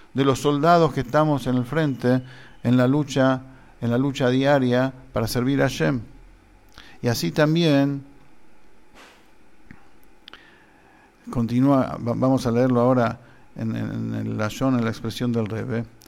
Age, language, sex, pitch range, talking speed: 50-69, English, male, 115-135 Hz, 140 wpm